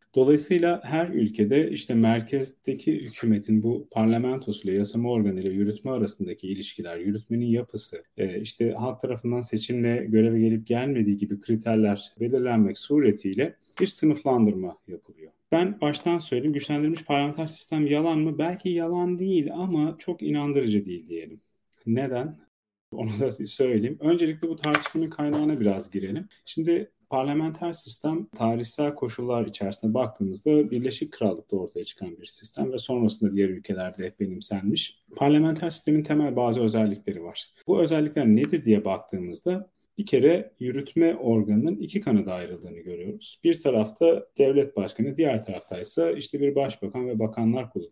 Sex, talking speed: male, 140 wpm